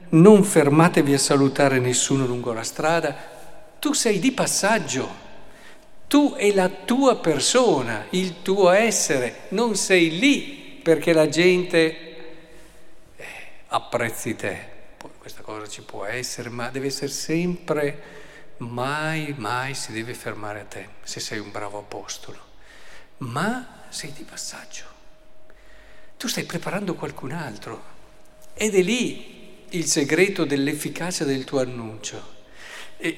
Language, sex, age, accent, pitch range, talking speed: Italian, male, 50-69, native, 125-170 Hz, 125 wpm